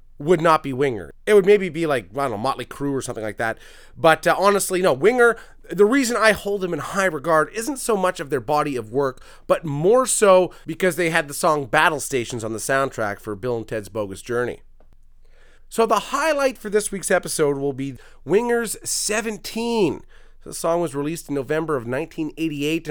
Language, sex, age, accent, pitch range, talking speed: English, male, 30-49, American, 135-205 Hz, 200 wpm